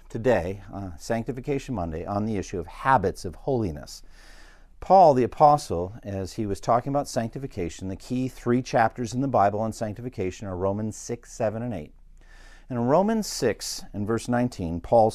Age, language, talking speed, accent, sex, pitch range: 50-69, English, 165 wpm, American, male, 100-155 Hz